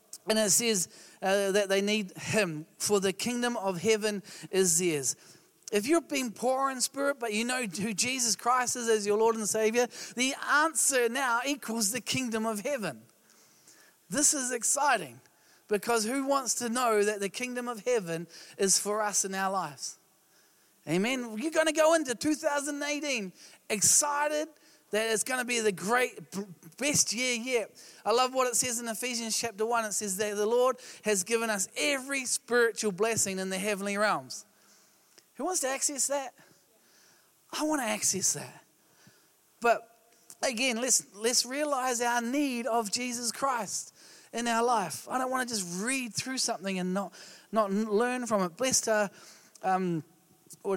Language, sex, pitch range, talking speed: English, male, 200-255 Hz, 170 wpm